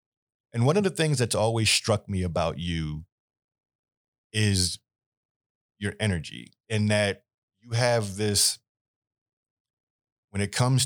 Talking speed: 120 wpm